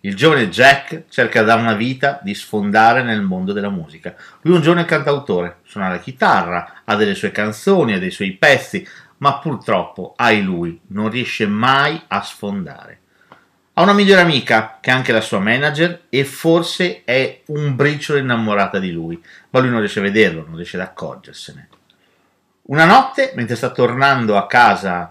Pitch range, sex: 105-180 Hz, male